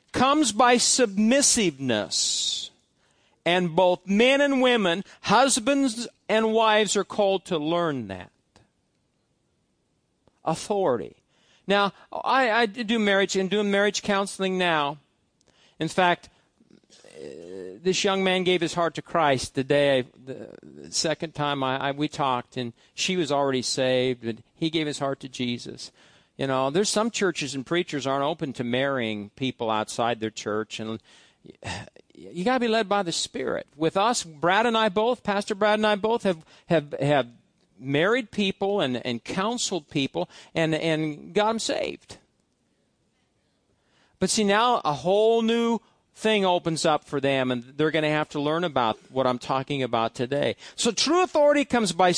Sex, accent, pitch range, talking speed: male, American, 140-215 Hz, 160 wpm